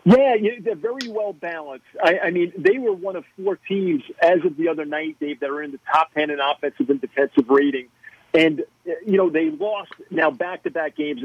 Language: English